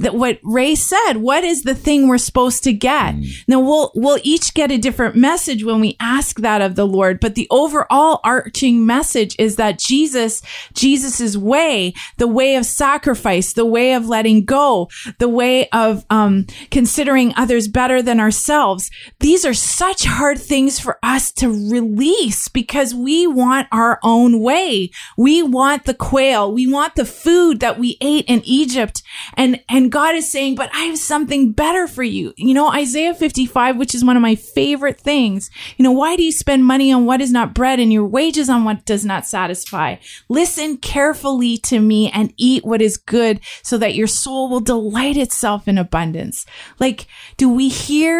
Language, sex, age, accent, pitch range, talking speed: English, female, 30-49, American, 220-280 Hz, 185 wpm